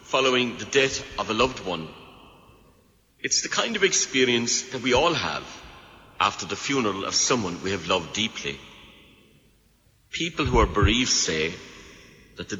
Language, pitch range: English, 100-130 Hz